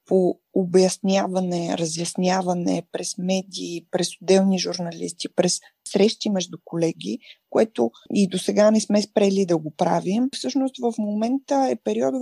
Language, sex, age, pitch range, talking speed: Bulgarian, female, 20-39, 180-230 Hz, 135 wpm